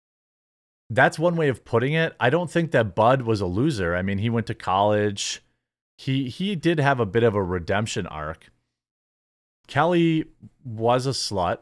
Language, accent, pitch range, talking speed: English, American, 95-140 Hz, 175 wpm